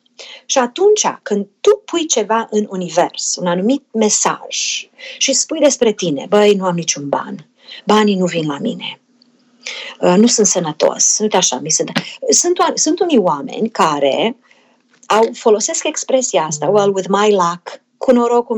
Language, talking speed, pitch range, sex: Romanian, 155 wpm, 195-275 Hz, female